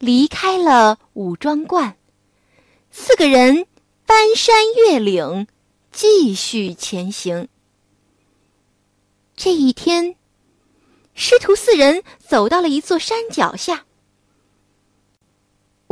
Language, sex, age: Chinese, female, 20-39